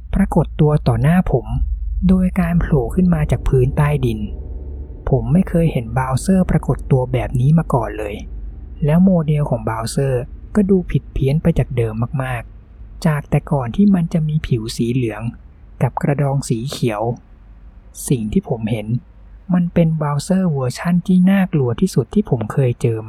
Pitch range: 110-160 Hz